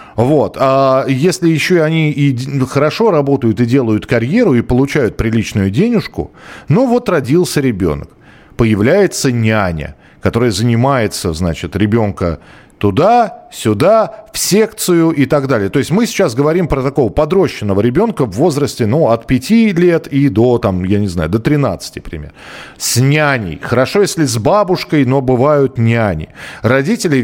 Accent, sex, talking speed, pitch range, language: native, male, 145 wpm, 110-150 Hz, Russian